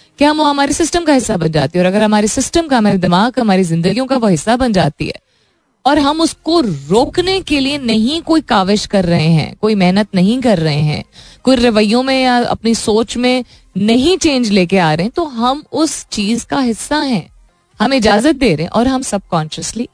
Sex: female